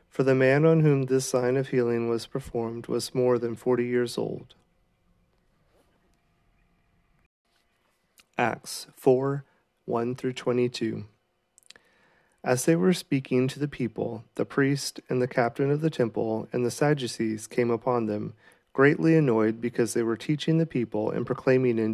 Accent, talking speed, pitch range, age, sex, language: American, 150 wpm, 115-135 Hz, 40-59, male, English